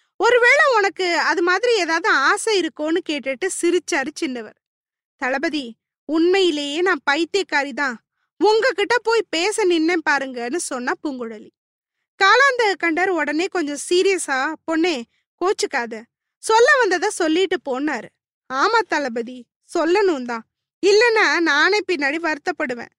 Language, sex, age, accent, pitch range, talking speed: Tamil, female, 20-39, native, 285-380 Hz, 105 wpm